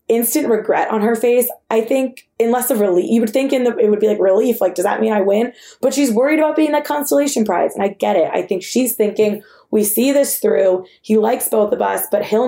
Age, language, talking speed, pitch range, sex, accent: 20-39, English, 260 wpm, 195-245 Hz, female, American